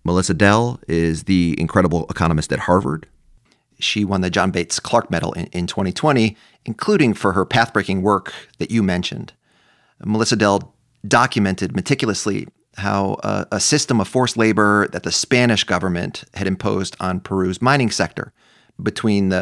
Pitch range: 95-115 Hz